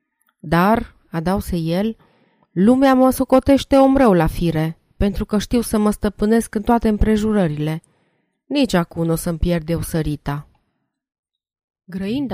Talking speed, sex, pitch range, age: 125 wpm, female, 165-220 Hz, 30-49